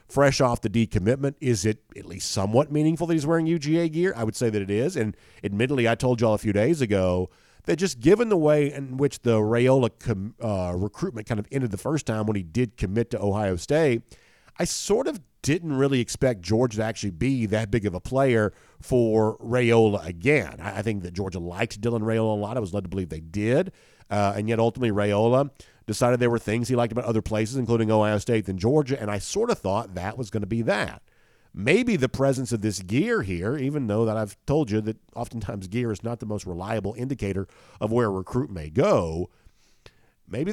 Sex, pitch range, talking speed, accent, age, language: male, 105-135 Hz, 220 wpm, American, 50-69, English